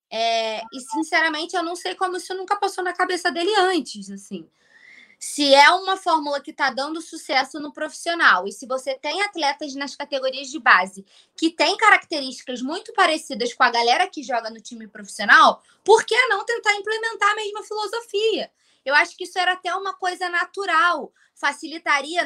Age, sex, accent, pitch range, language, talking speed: 20-39, female, Brazilian, 255-345 Hz, Portuguese, 175 wpm